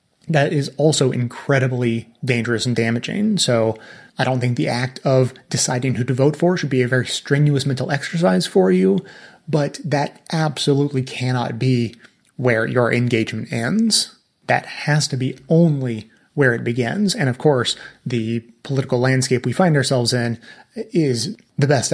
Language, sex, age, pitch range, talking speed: English, male, 30-49, 125-150 Hz, 160 wpm